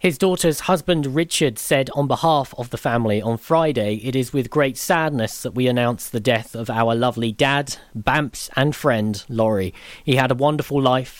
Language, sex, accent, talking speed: English, male, British, 190 wpm